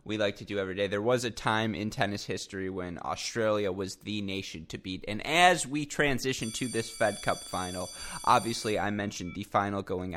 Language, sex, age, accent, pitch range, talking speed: English, male, 20-39, American, 95-120 Hz, 205 wpm